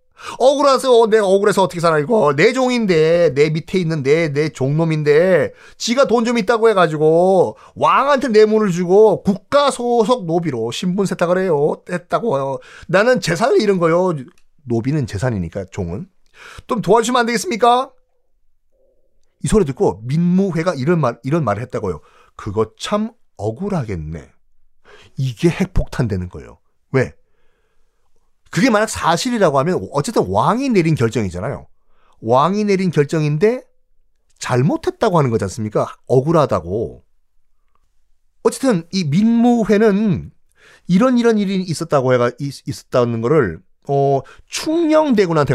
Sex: male